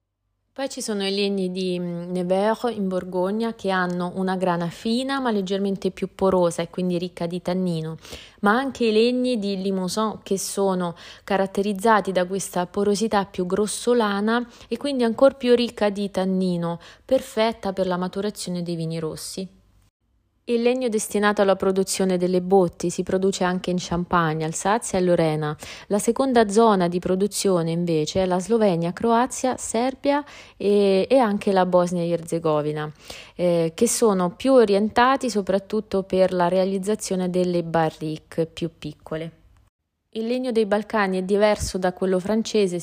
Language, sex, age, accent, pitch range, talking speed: Italian, female, 30-49, native, 175-215 Hz, 145 wpm